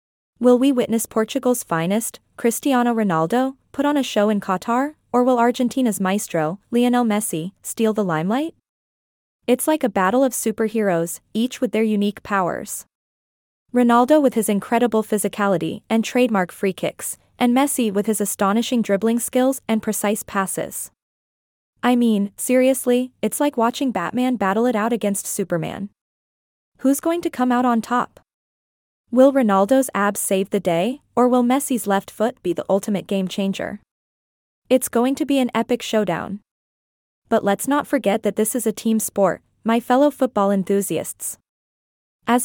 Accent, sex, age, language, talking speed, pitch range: American, female, 20-39, English, 155 wpm, 200-250 Hz